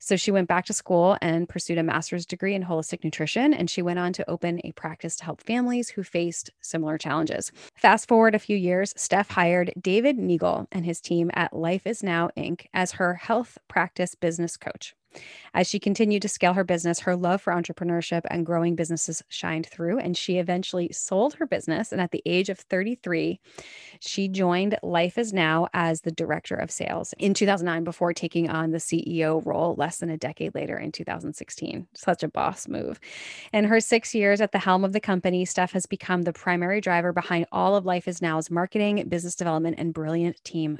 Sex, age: female, 20-39